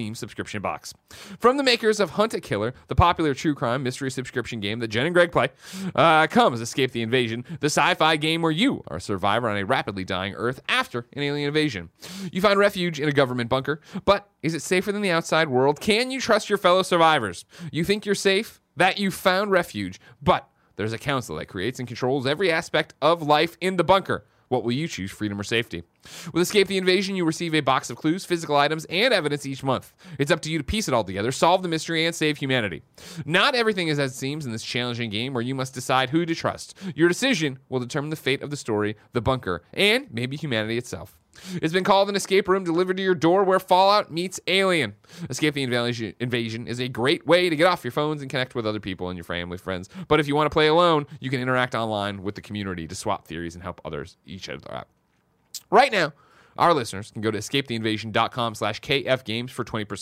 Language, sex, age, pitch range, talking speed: English, male, 30-49, 115-175 Hz, 230 wpm